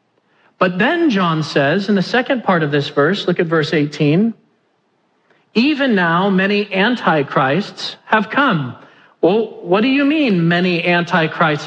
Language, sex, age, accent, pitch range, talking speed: English, male, 40-59, American, 170-210 Hz, 145 wpm